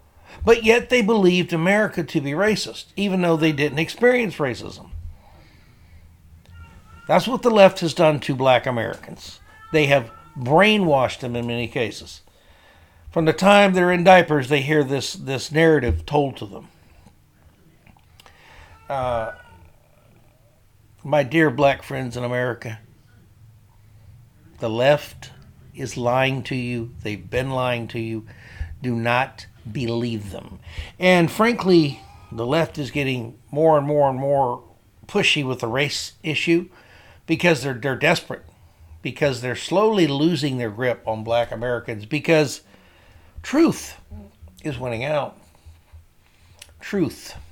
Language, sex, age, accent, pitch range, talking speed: English, male, 60-79, American, 105-155 Hz, 130 wpm